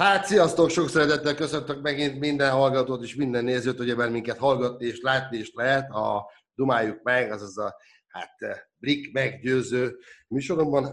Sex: male